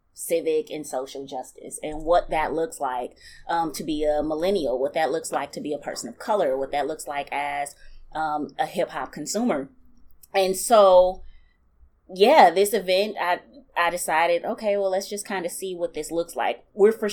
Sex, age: female, 20-39